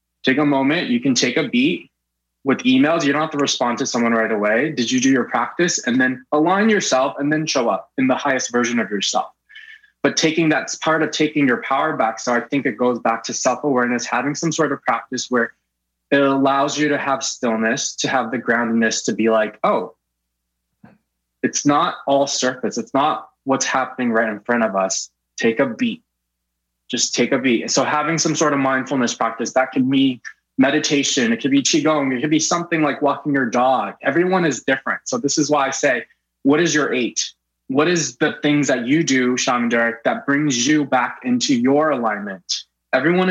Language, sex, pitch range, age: English, male, 115-150 Hz, 20-39